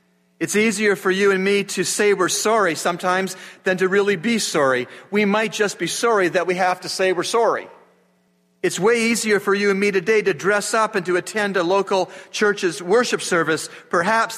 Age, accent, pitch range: 40-59, American, 155-205 Hz